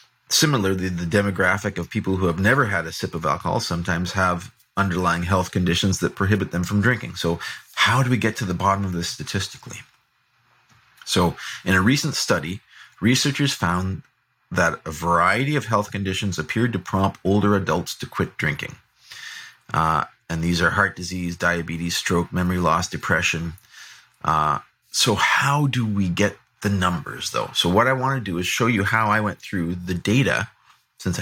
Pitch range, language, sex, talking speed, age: 85-110 Hz, English, male, 175 wpm, 30-49